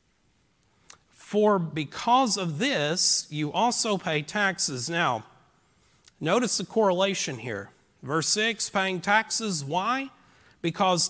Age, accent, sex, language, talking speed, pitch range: 40-59, American, male, English, 105 wpm, 160-210 Hz